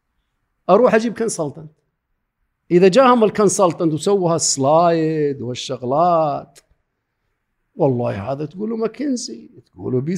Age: 50-69